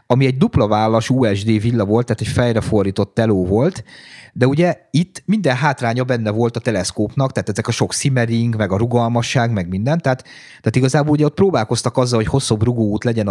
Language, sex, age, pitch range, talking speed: Hungarian, male, 30-49, 110-130 Hz, 190 wpm